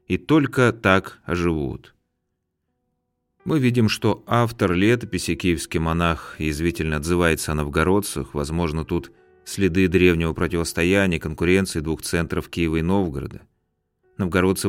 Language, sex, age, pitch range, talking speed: Russian, male, 30-49, 80-110 Hz, 110 wpm